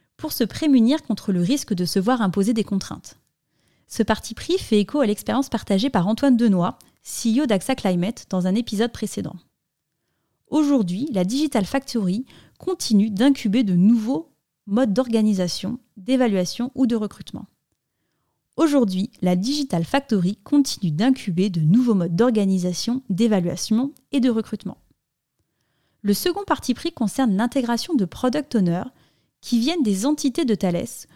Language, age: French, 30-49